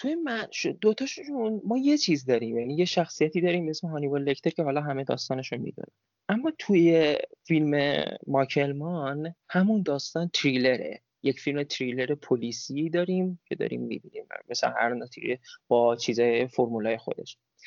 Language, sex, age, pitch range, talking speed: Persian, male, 20-39, 130-170 Hz, 135 wpm